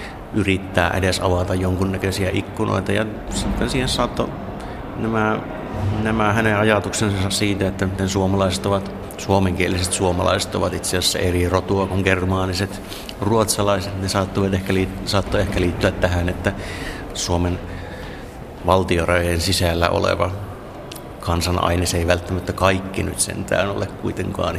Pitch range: 90-100 Hz